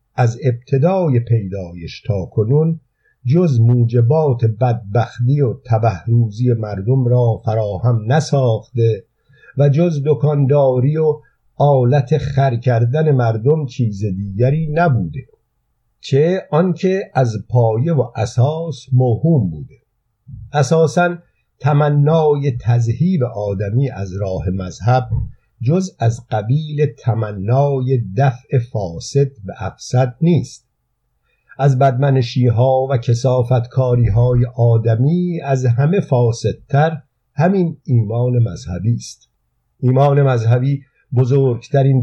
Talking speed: 90 wpm